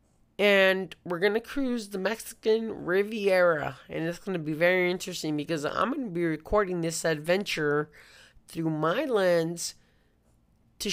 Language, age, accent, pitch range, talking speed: English, 30-49, American, 170-245 Hz, 150 wpm